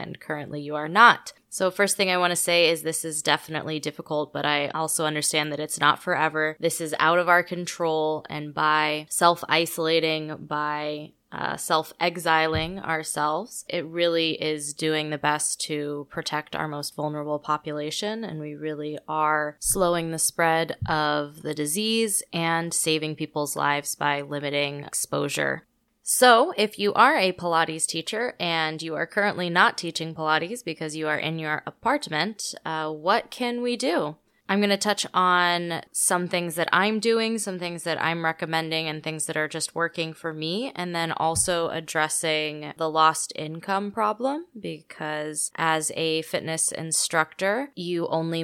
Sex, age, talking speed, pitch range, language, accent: female, 20-39, 160 wpm, 150-175 Hz, English, American